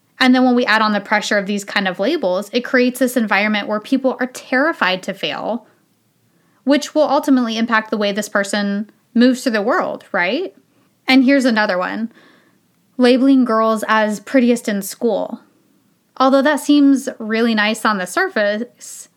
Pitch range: 205-265 Hz